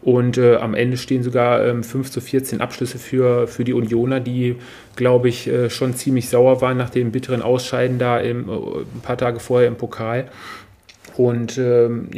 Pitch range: 115-130 Hz